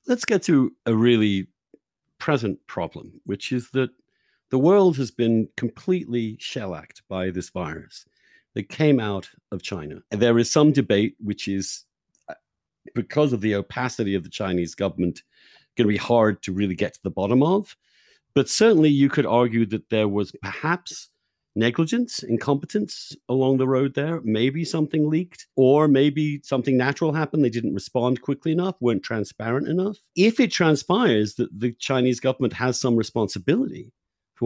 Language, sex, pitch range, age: English, male, 110-155 Hz, 50-69